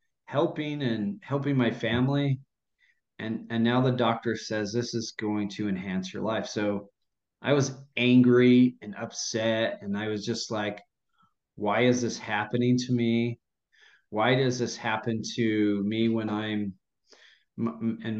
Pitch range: 110-130 Hz